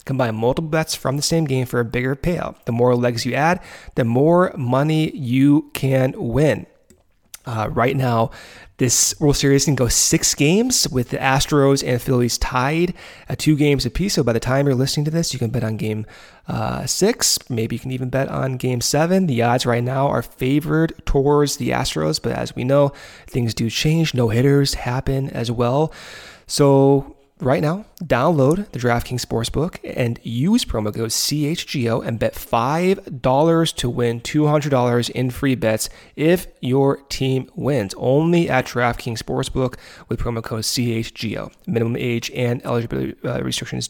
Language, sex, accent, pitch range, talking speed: English, male, American, 120-150 Hz, 170 wpm